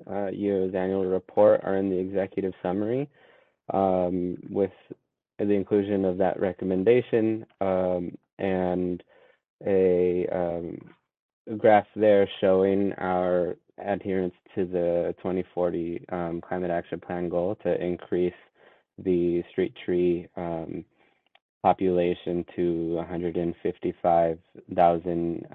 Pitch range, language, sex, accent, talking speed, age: 85-95 Hz, English, male, American, 100 wpm, 20-39